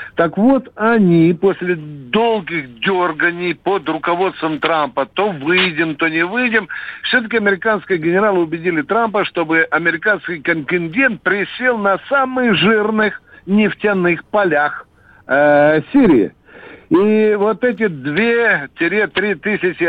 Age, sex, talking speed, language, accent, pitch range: 60-79, male, 110 wpm, Russian, native, 180-235 Hz